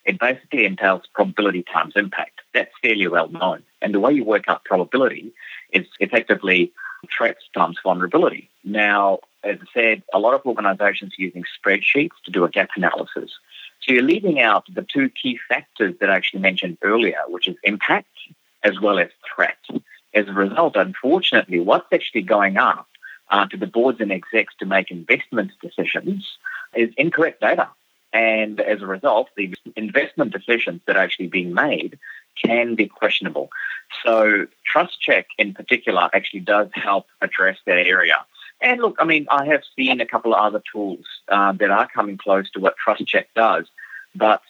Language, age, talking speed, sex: English, 40-59, 170 wpm, male